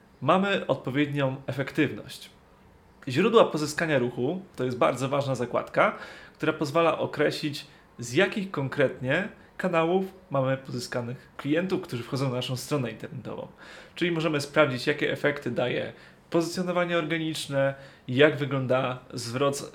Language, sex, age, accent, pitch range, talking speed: Polish, male, 30-49, native, 130-165 Hz, 115 wpm